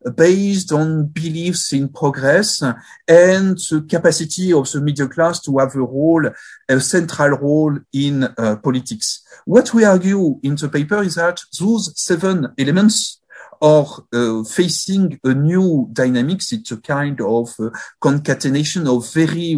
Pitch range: 130-170 Hz